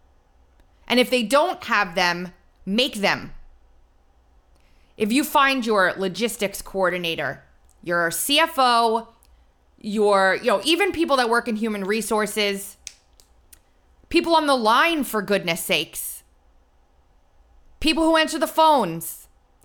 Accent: American